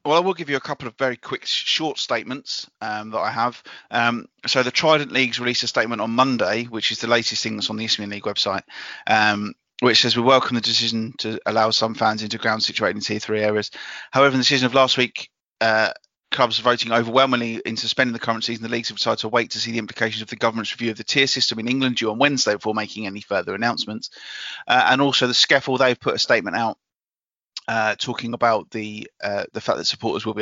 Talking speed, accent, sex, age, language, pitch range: 235 wpm, British, male, 30-49, English, 110-125 Hz